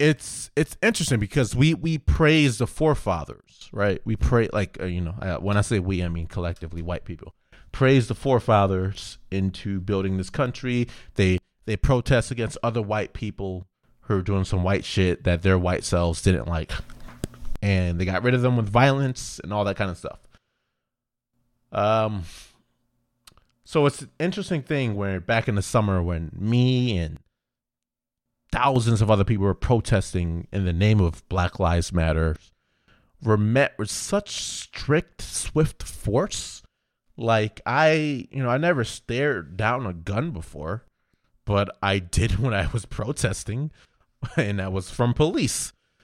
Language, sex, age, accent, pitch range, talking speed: English, male, 30-49, American, 95-125 Hz, 160 wpm